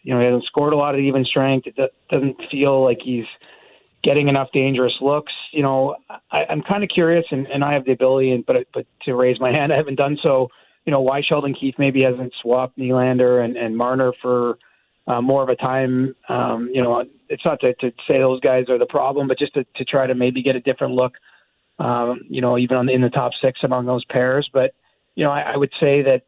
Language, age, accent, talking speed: English, 30-49, American, 240 wpm